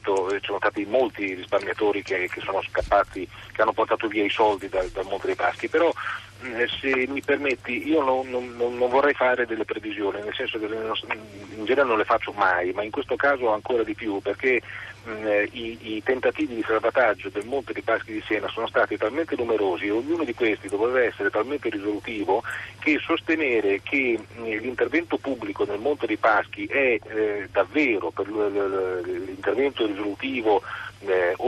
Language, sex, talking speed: Italian, male, 170 wpm